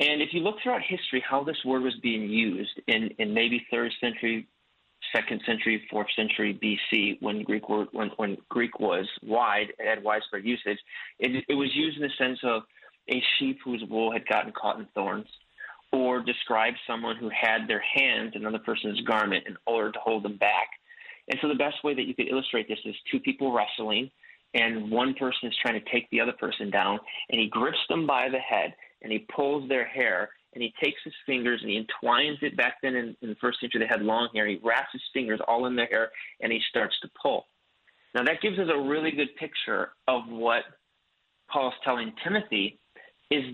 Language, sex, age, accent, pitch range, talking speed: English, male, 30-49, American, 115-135 Hz, 210 wpm